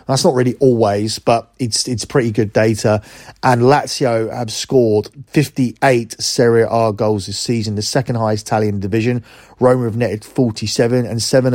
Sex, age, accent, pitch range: male, 30-49, British, 110-125 Hz